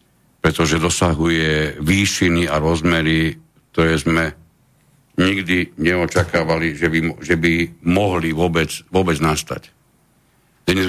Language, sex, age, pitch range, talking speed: Slovak, male, 60-79, 80-100 Hz, 105 wpm